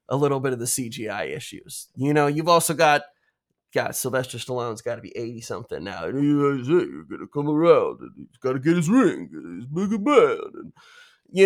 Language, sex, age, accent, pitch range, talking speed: English, male, 20-39, American, 145-180 Hz, 195 wpm